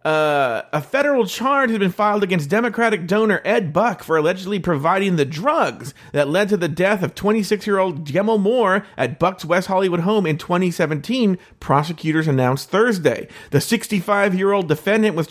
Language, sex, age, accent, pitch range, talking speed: English, male, 40-59, American, 140-195 Hz, 155 wpm